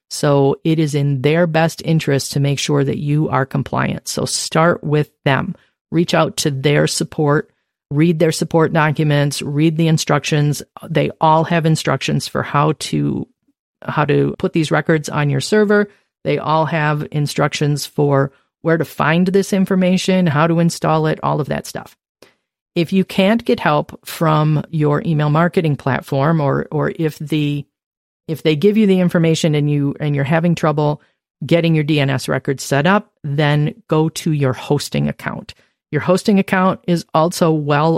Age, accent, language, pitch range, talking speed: 40-59, American, English, 145-170 Hz, 170 wpm